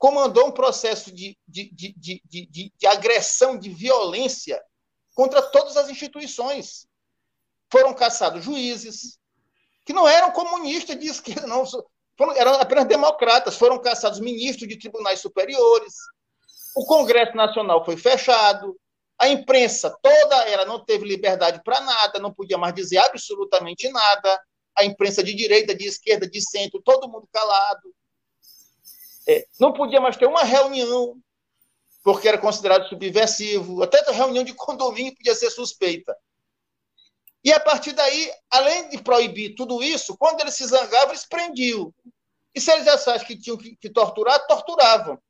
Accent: Brazilian